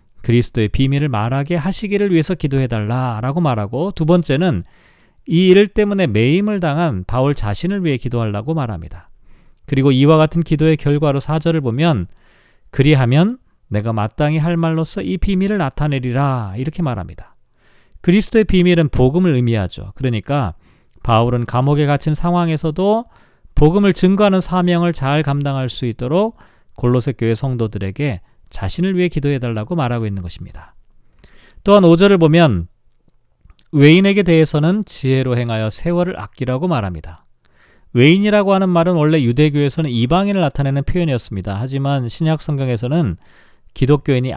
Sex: male